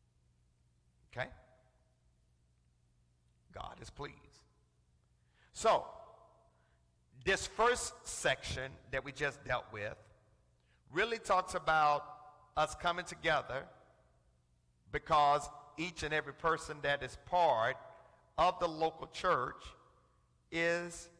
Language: English